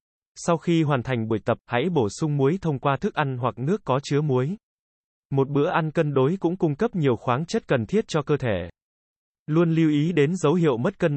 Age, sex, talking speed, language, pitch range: 20-39, male, 230 wpm, Vietnamese, 120-160 Hz